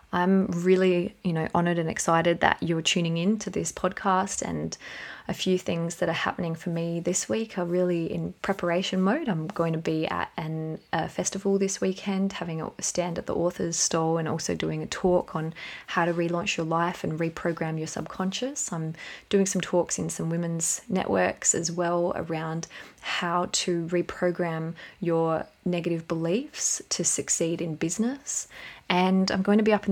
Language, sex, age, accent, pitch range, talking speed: English, female, 20-39, Australian, 165-185 Hz, 180 wpm